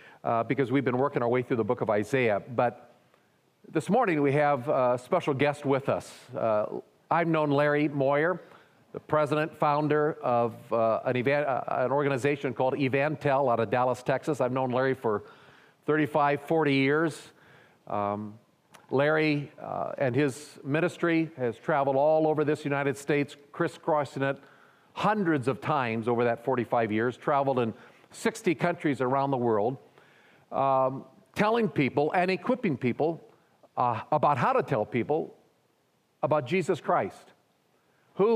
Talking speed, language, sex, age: 145 wpm, English, male, 40-59